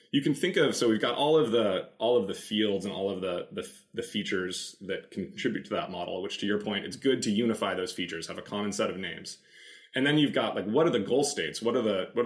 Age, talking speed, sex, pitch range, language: 20-39, 275 wpm, male, 100-145 Hz, English